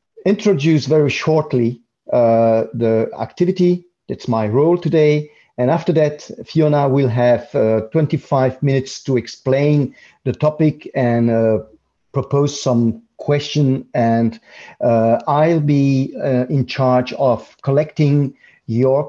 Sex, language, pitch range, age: male, English, 115-150 Hz, 50-69